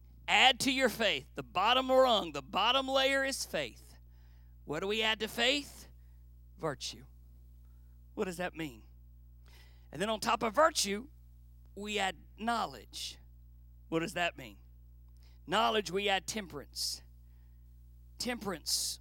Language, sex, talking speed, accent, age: English, male, 130 wpm, American, 50-69